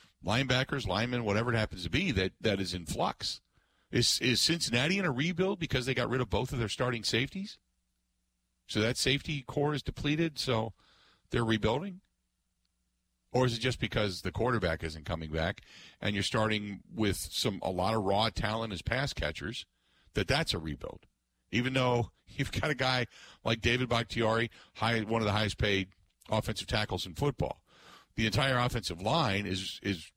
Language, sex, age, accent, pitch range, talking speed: English, male, 50-69, American, 85-125 Hz, 175 wpm